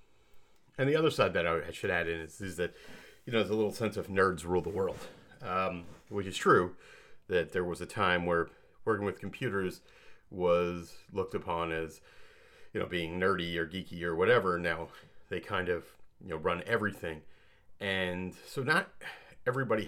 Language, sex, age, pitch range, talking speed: English, male, 30-49, 90-115 Hz, 180 wpm